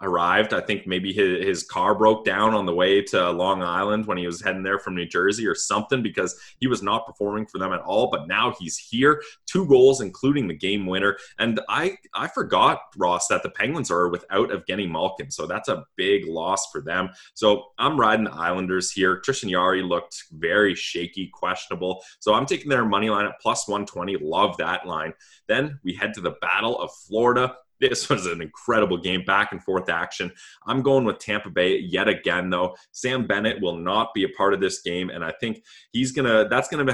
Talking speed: 215 wpm